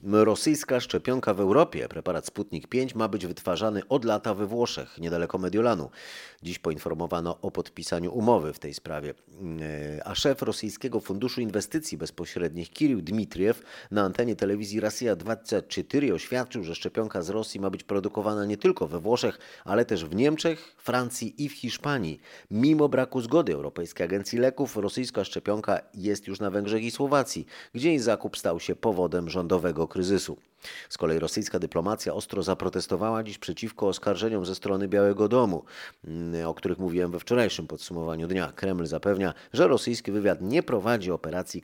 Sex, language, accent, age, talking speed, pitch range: male, Polish, native, 30-49, 155 wpm, 85-115 Hz